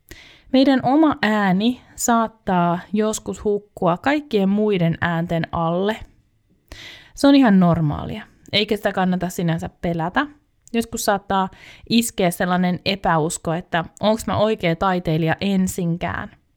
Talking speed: 110 wpm